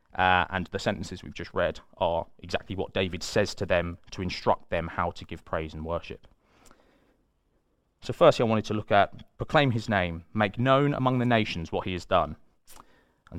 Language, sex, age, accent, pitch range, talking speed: English, male, 30-49, British, 90-110 Hz, 195 wpm